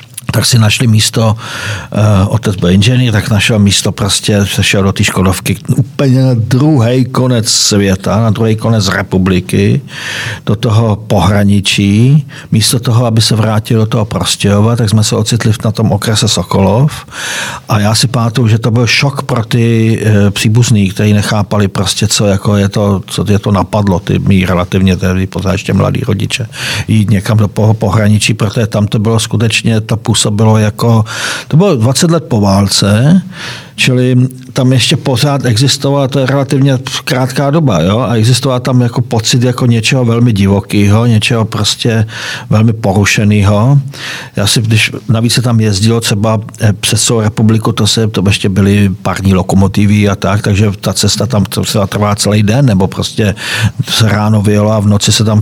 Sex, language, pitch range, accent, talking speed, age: male, Czech, 105-125 Hz, native, 170 wpm, 50-69